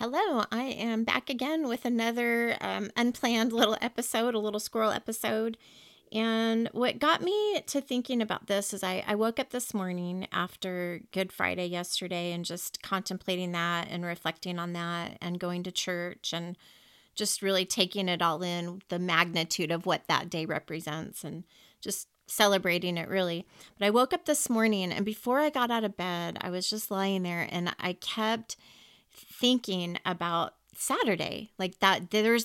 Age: 30-49